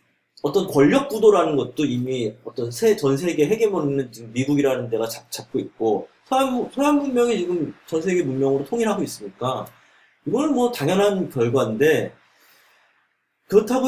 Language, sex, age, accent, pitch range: Korean, male, 30-49, native, 140-225 Hz